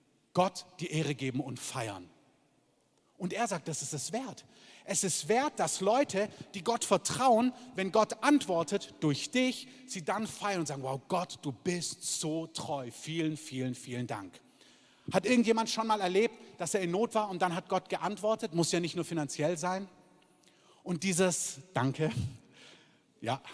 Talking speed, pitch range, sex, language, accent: 170 wpm, 145-210 Hz, male, German, German